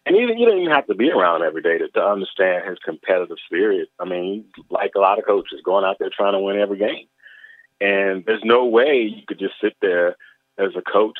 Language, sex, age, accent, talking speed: English, male, 30-49, American, 230 wpm